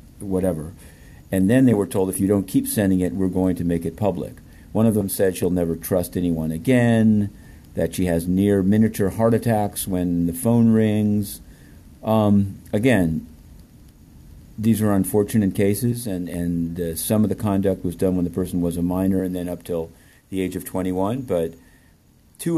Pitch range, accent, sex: 85-100 Hz, American, male